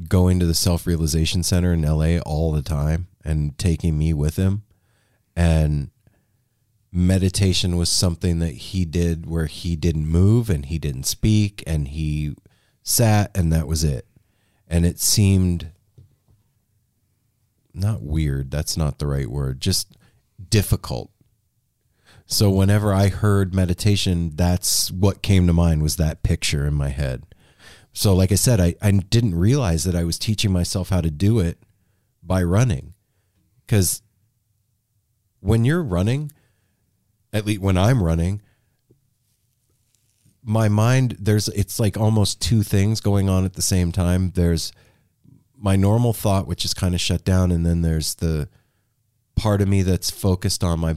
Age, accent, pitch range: 30-49, American, 85-110 Hz